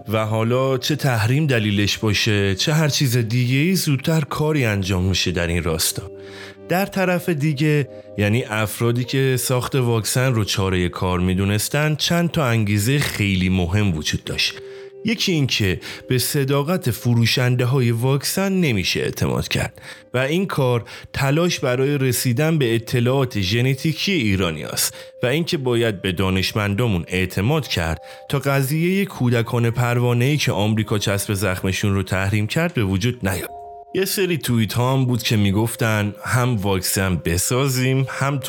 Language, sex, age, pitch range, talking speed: Persian, male, 30-49, 100-140 Hz, 140 wpm